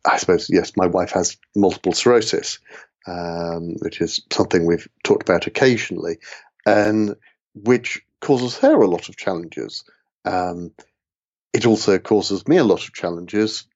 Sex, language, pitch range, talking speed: male, English, 90-110 Hz, 145 wpm